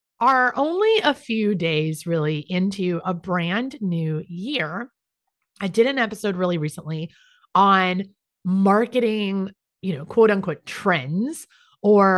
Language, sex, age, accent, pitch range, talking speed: English, female, 30-49, American, 175-235 Hz, 120 wpm